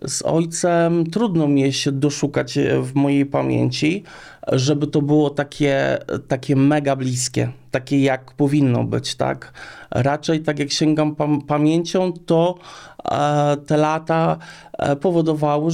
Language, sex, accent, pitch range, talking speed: Polish, male, native, 115-150 Hz, 115 wpm